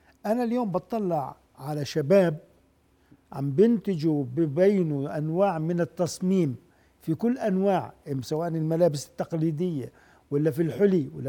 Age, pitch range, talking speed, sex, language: 50-69, 160-215 Hz, 110 wpm, male, Arabic